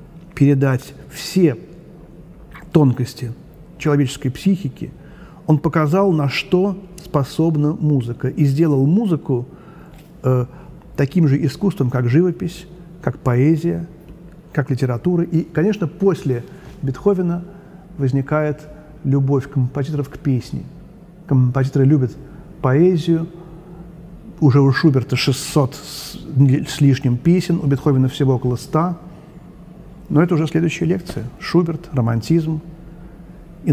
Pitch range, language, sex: 135-170 Hz, Russian, male